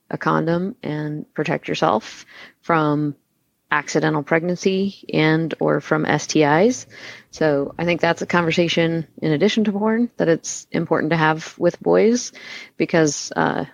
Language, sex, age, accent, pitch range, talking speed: English, female, 30-49, American, 150-175 Hz, 135 wpm